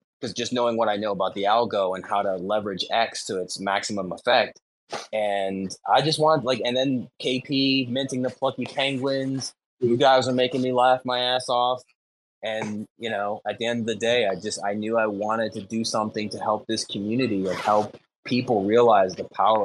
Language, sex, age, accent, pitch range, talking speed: English, male, 20-39, American, 110-135 Hz, 205 wpm